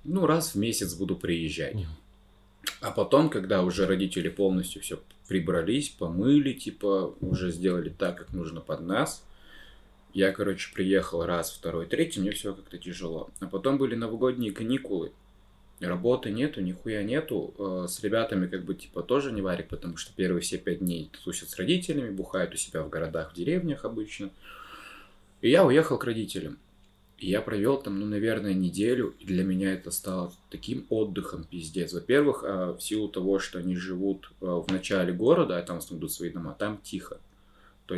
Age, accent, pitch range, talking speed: 20-39, native, 90-100 Hz, 165 wpm